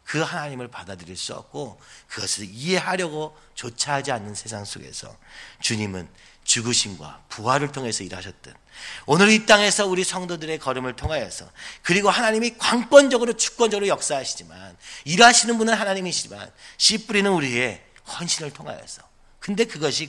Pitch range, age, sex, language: 115-185 Hz, 40-59, male, Korean